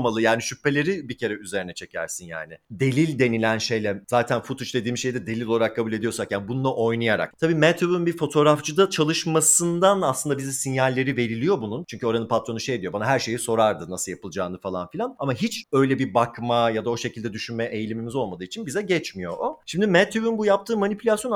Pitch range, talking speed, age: 115-165 Hz, 190 wpm, 40-59